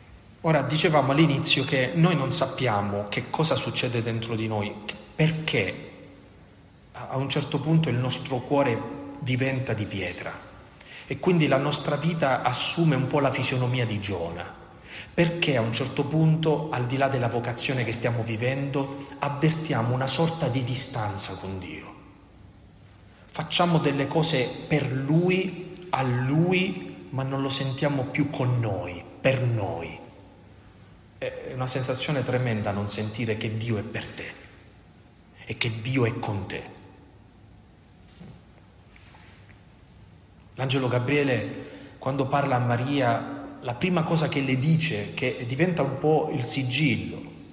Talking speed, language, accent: 135 wpm, Italian, native